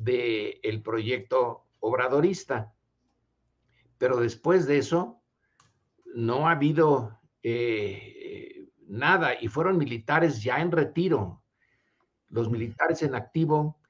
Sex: male